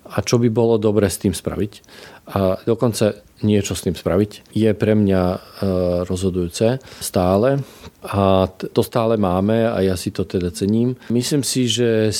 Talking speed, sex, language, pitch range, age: 160 wpm, male, Slovak, 95-115 Hz, 40-59